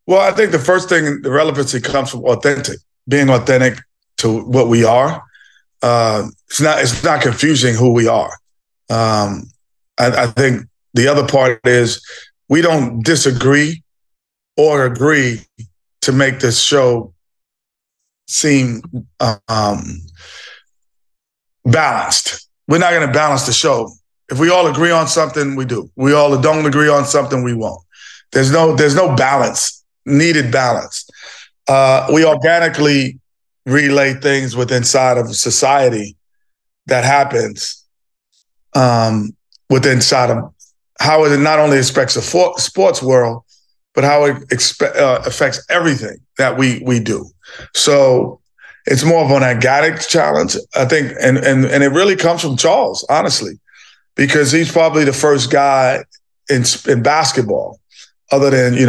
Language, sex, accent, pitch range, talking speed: English, male, American, 120-150 Hz, 145 wpm